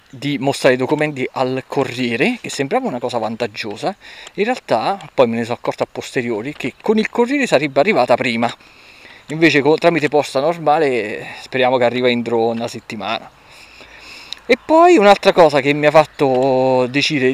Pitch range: 125-155 Hz